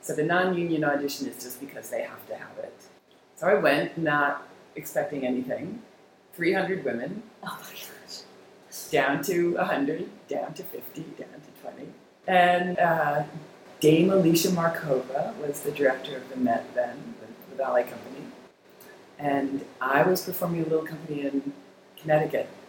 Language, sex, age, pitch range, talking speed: English, female, 40-59, 140-180 Hz, 140 wpm